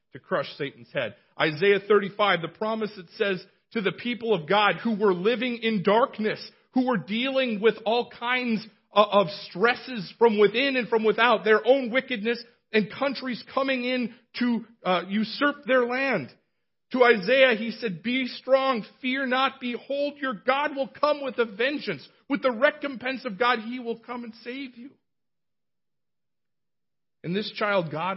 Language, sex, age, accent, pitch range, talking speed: English, male, 40-59, American, 200-250 Hz, 160 wpm